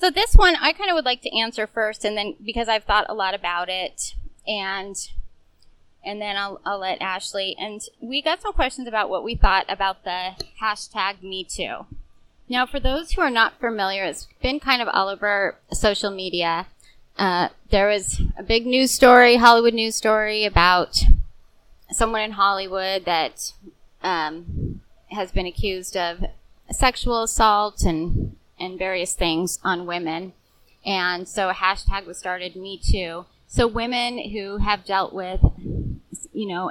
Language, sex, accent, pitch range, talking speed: English, female, American, 180-230 Hz, 160 wpm